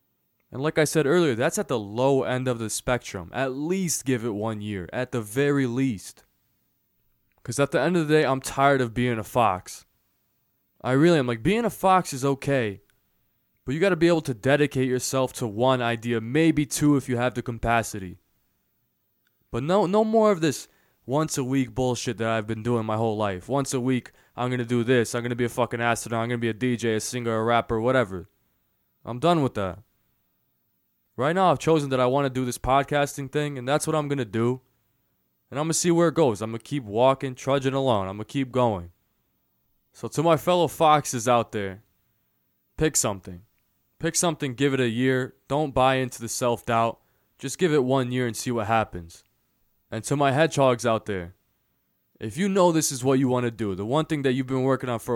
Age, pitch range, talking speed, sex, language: 20-39, 115-140 Hz, 220 wpm, male, English